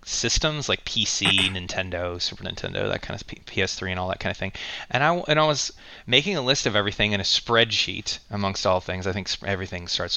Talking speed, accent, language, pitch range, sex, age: 210 wpm, American, English, 95-115 Hz, male, 20-39